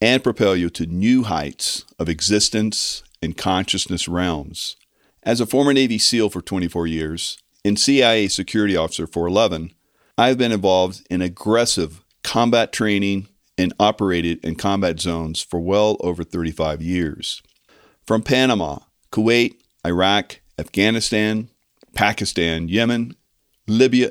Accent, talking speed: American, 125 wpm